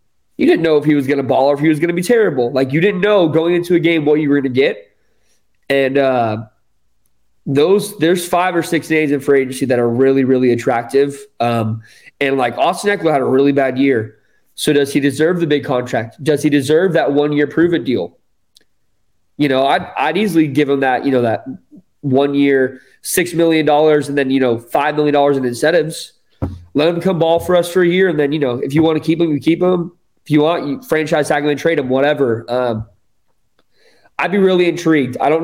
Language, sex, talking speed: English, male, 230 wpm